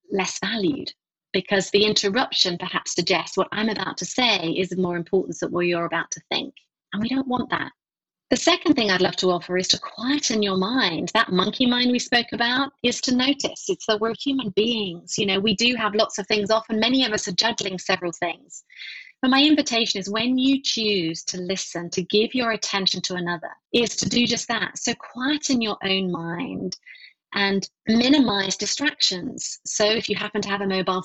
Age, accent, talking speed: 30-49, British, 205 wpm